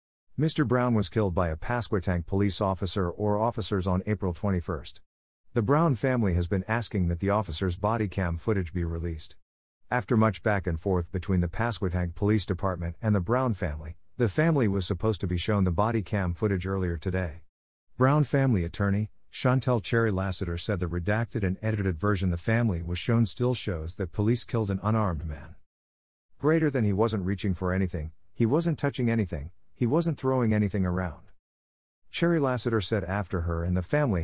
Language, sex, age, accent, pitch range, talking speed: English, male, 50-69, American, 90-115 Hz, 180 wpm